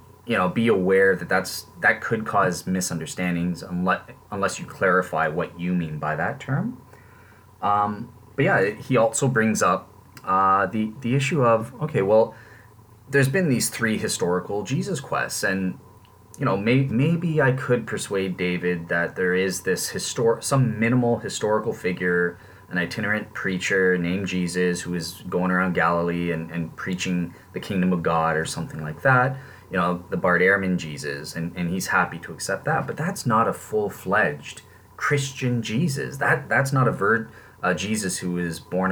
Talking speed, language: 170 wpm, English